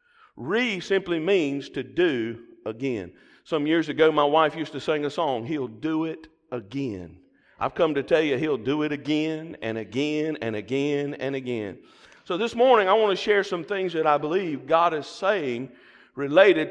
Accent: American